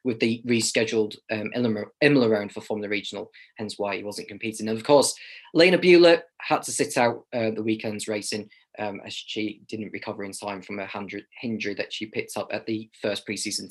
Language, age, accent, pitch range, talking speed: English, 20-39, British, 110-165 Hz, 195 wpm